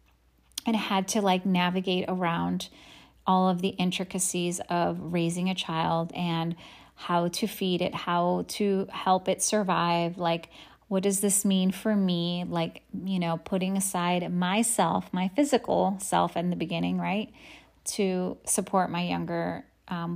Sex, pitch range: female, 170-205 Hz